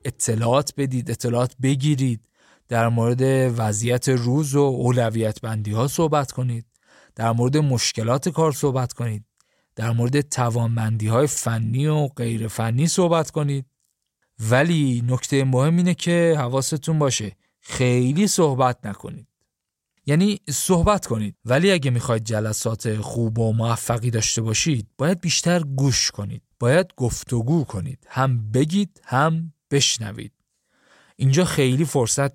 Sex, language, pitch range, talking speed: male, Persian, 115-150 Hz, 120 wpm